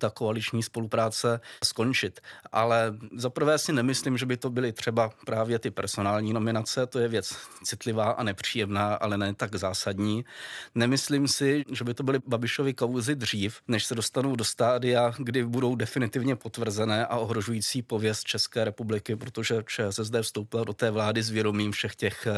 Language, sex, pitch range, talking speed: Czech, male, 110-130 Hz, 160 wpm